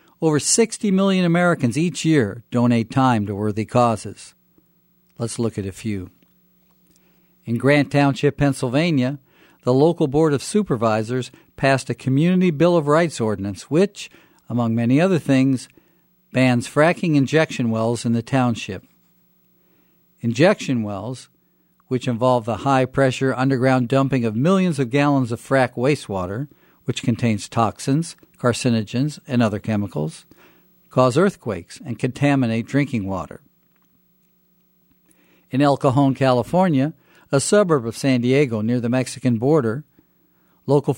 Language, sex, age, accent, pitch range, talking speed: English, male, 50-69, American, 120-160 Hz, 125 wpm